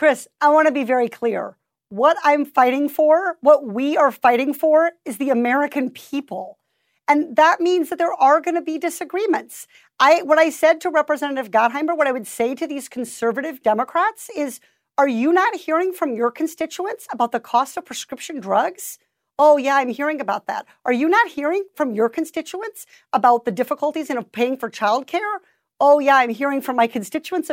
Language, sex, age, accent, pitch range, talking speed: English, female, 50-69, American, 240-325 Hz, 185 wpm